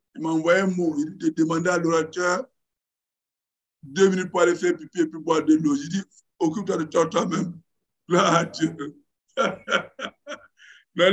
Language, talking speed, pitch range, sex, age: English, 100 wpm, 165-200 Hz, male, 60-79